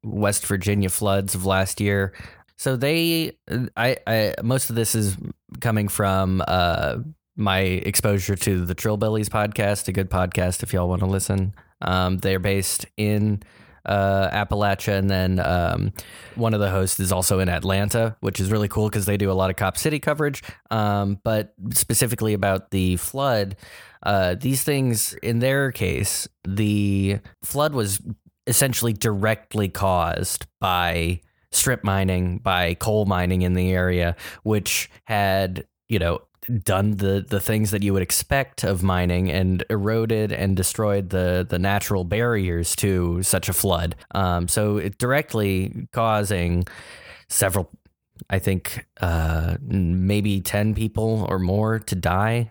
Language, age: English, 20-39